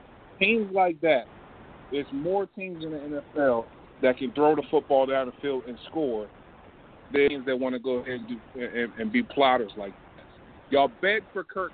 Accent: American